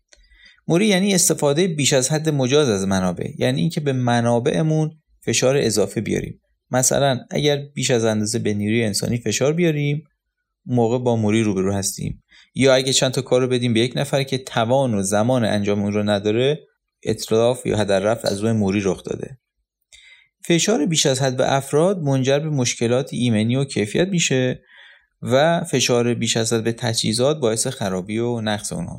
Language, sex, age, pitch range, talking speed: Persian, male, 30-49, 110-145 Hz, 170 wpm